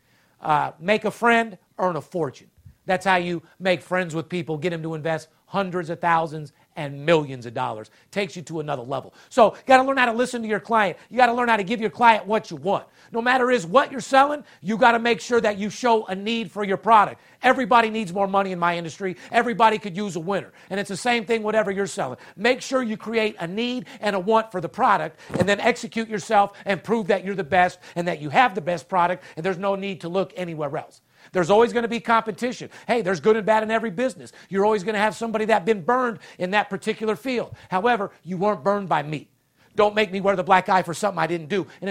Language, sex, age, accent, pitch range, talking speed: English, male, 50-69, American, 180-230 Hz, 250 wpm